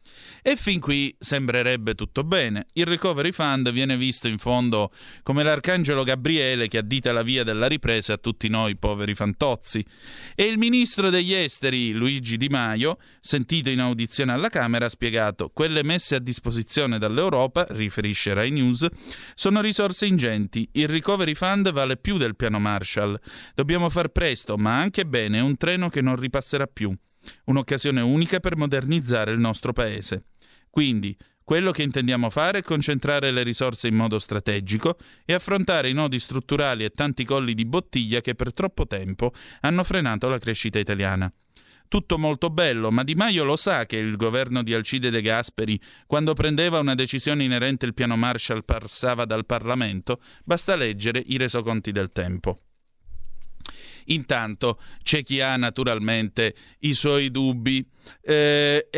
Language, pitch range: Italian, 110-150 Hz